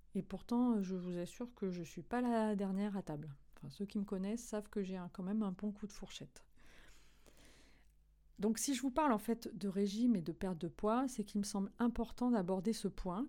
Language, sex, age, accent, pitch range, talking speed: French, female, 40-59, French, 175-225 Hz, 225 wpm